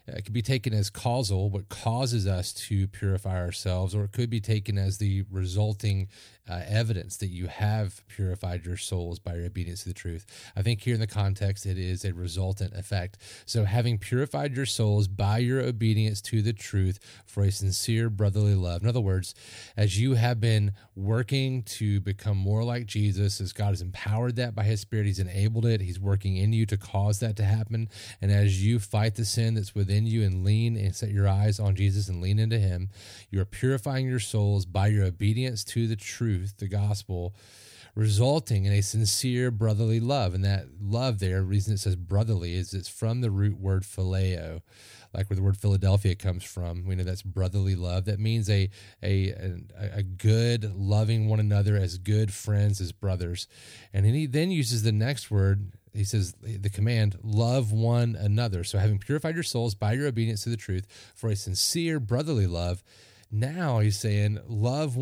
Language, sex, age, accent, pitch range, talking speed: English, male, 30-49, American, 95-115 Hz, 195 wpm